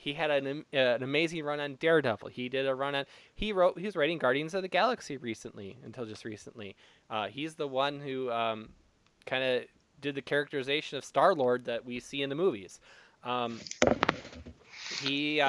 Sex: male